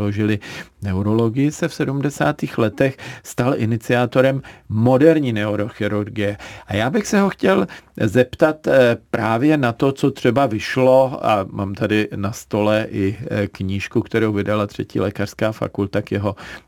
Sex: male